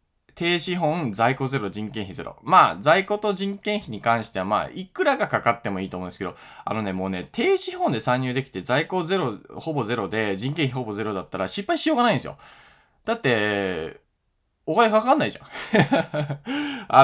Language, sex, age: Japanese, male, 20-39